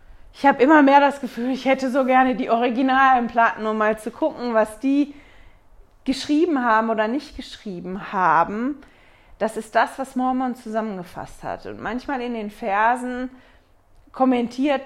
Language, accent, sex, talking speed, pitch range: German, German, female, 155 wpm, 200-255 Hz